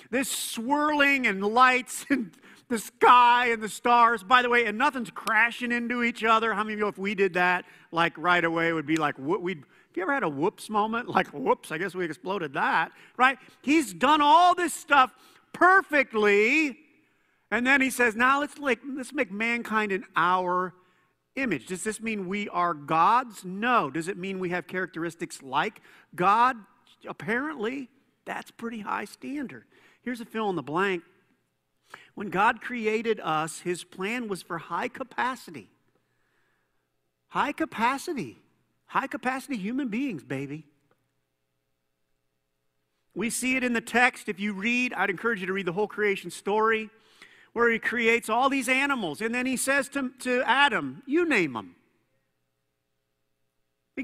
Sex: male